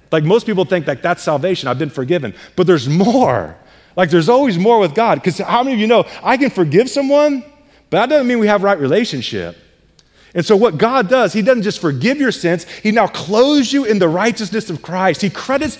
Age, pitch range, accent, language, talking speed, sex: 30-49, 150-215 Hz, American, English, 225 wpm, male